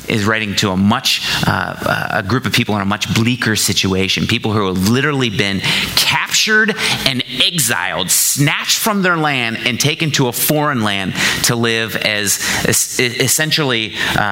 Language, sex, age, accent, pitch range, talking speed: English, male, 30-49, American, 95-125 Hz, 155 wpm